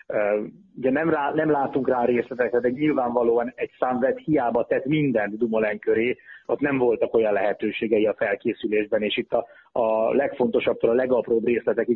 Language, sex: Hungarian, male